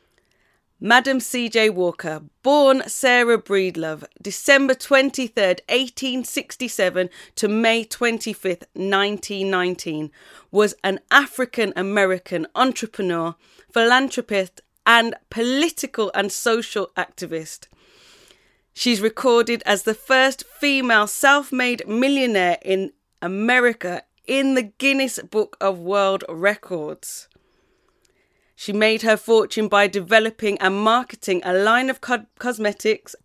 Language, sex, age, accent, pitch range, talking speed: English, female, 30-49, British, 190-240 Hz, 95 wpm